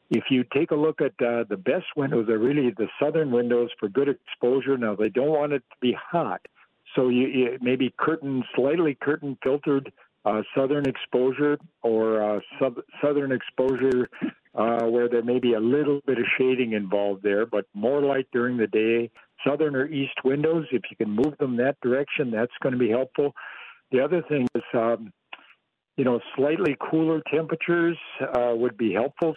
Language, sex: English, male